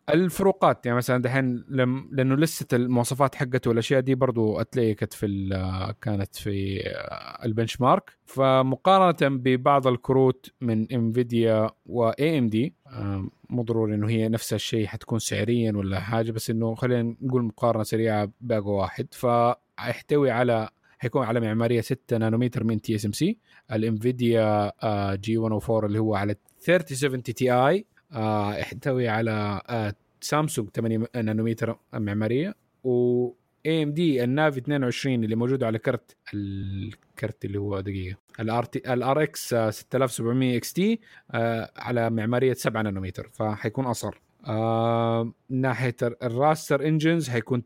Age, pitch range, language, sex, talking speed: 20-39, 110-130 Hz, Arabic, male, 120 wpm